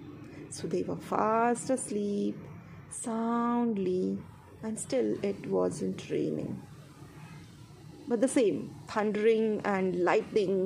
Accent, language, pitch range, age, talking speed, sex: native, Marathi, 150-250 Hz, 30-49, 95 wpm, female